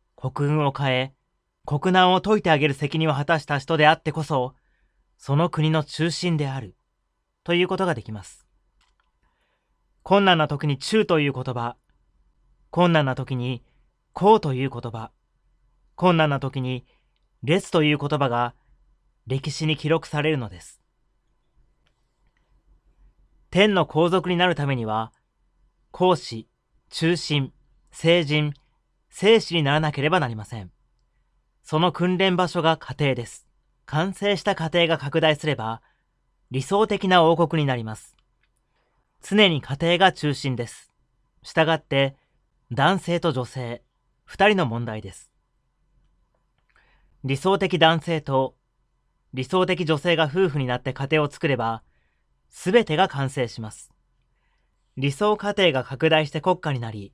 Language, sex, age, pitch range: Japanese, male, 30-49, 125-170 Hz